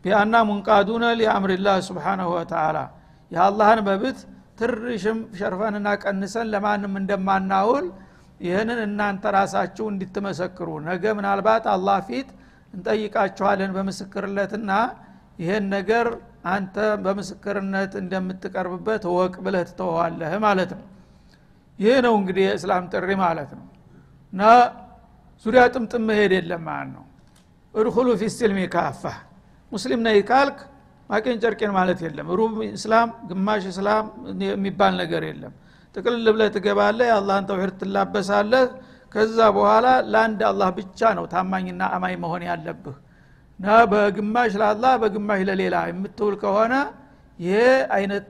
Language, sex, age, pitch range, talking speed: Amharic, male, 60-79, 185-220 Hz, 110 wpm